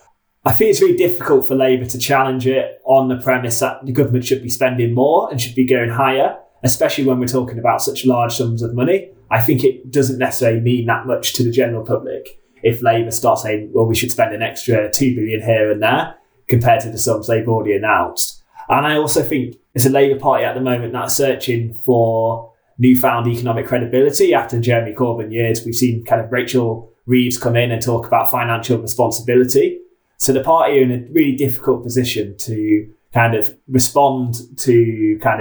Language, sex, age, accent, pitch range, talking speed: English, male, 20-39, British, 115-135 Hz, 200 wpm